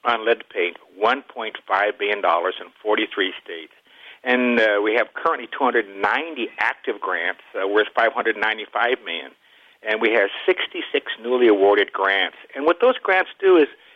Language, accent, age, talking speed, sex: English, American, 60-79, 145 wpm, male